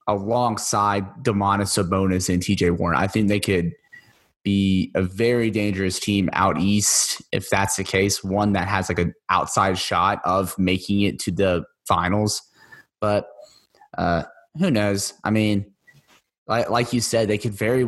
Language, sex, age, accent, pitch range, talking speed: English, male, 20-39, American, 100-115 Hz, 160 wpm